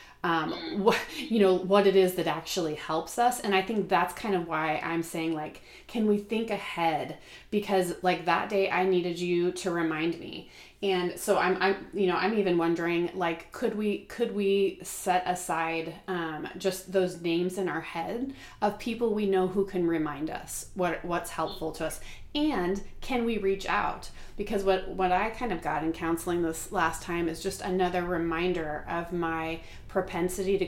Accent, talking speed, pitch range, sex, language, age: American, 190 wpm, 170-205 Hz, female, English, 30-49